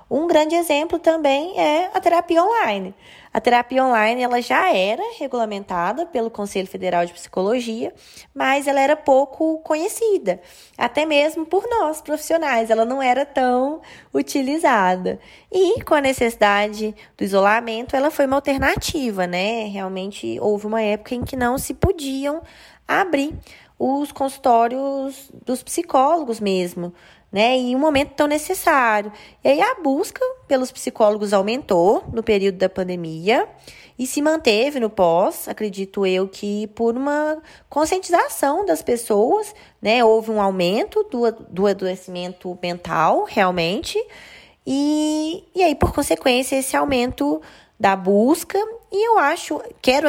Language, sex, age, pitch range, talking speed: Portuguese, female, 20-39, 205-305 Hz, 135 wpm